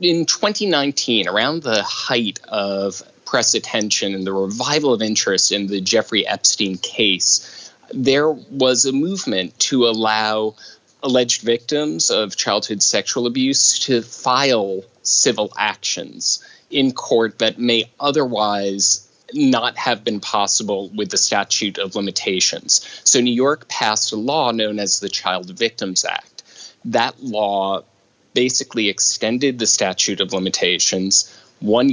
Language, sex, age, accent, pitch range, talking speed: English, male, 30-49, American, 100-130 Hz, 130 wpm